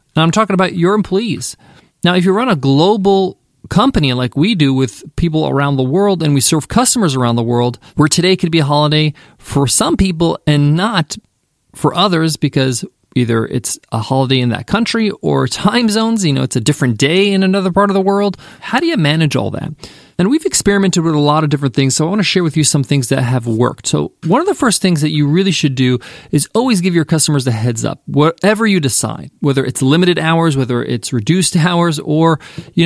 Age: 30-49